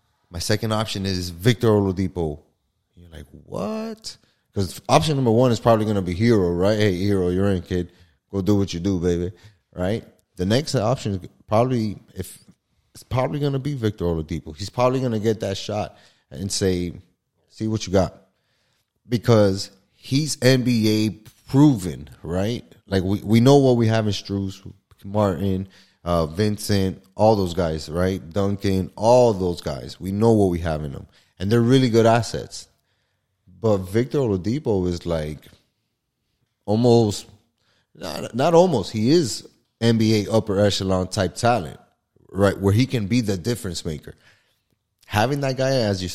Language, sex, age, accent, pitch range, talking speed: English, male, 30-49, American, 90-115 Hz, 165 wpm